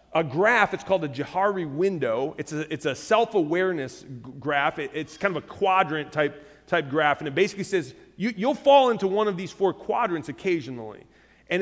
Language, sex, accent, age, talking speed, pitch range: English, male, American, 30-49, 190 wpm, 180-230 Hz